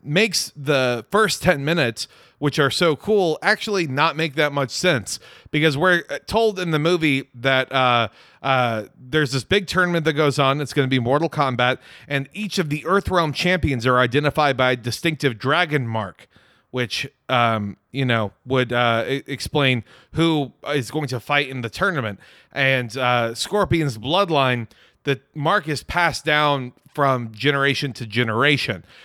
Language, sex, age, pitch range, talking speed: English, male, 30-49, 125-155 Hz, 160 wpm